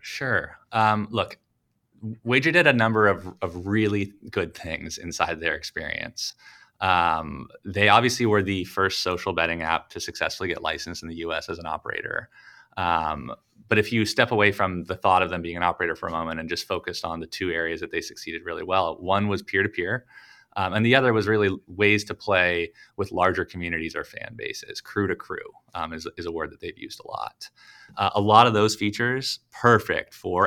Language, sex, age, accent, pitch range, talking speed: English, male, 30-49, American, 90-115 Hz, 205 wpm